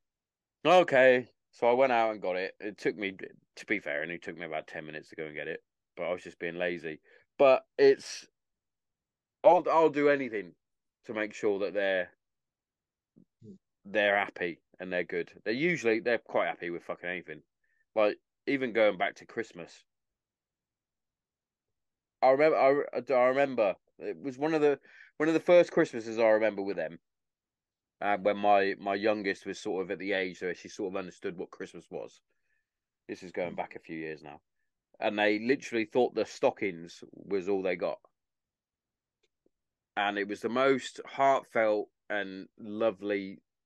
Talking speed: 175 wpm